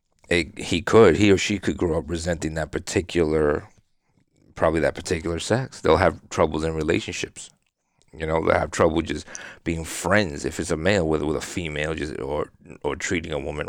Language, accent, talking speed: English, American, 190 wpm